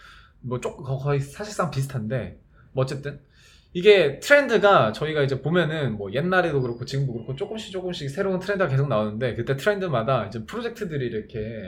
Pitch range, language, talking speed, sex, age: 125-185 Hz, English, 145 wpm, male, 20-39